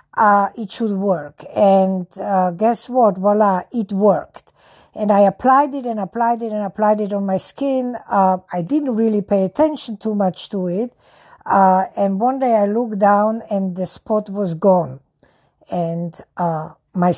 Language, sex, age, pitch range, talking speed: English, female, 60-79, 190-225 Hz, 170 wpm